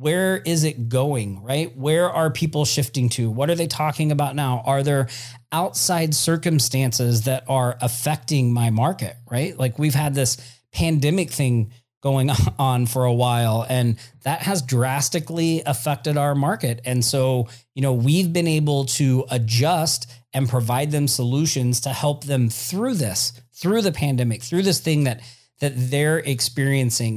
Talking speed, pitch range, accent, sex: 160 wpm, 120-150 Hz, American, male